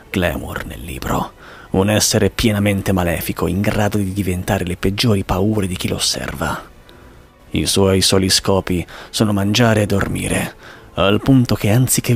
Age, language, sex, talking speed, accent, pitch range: 30-49, Italian, male, 150 wpm, native, 90-105 Hz